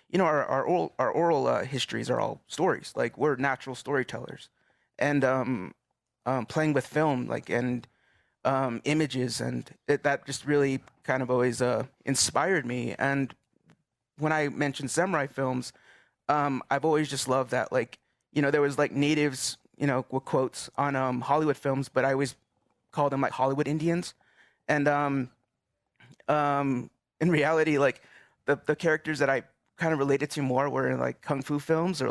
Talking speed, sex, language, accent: 175 wpm, male, English, American